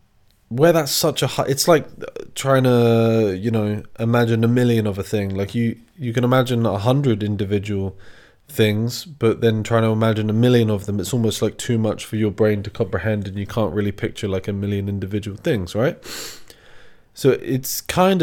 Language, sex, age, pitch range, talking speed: English, male, 20-39, 105-120 Hz, 190 wpm